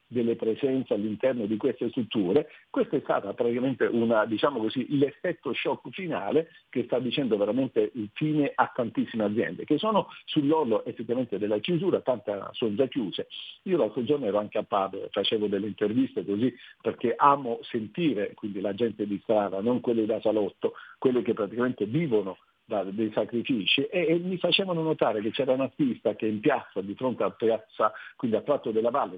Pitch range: 110-160 Hz